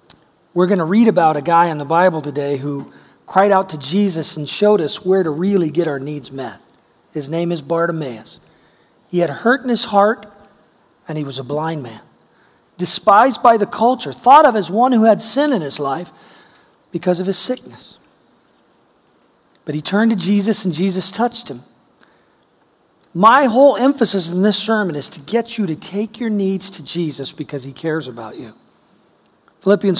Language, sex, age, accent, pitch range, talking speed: English, male, 40-59, American, 160-210 Hz, 180 wpm